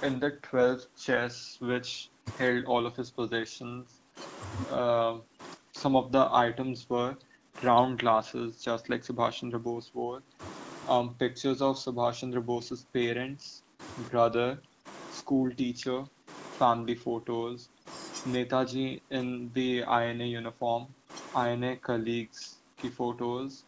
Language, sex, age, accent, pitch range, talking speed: English, male, 20-39, Indian, 120-125 Hz, 110 wpm